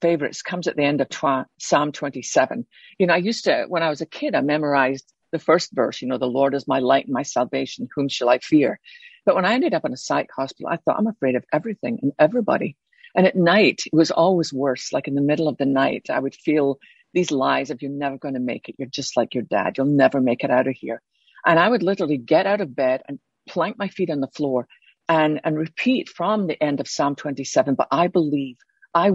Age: 50-69